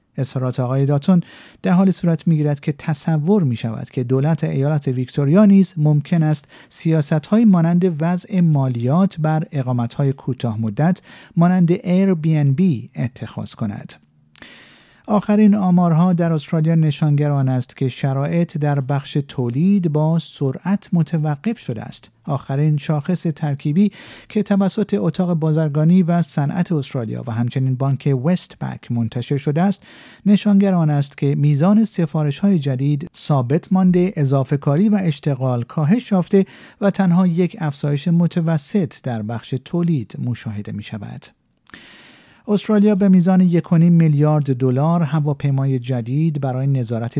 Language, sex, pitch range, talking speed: Persian, male, 130-175 Hz, 130 wpm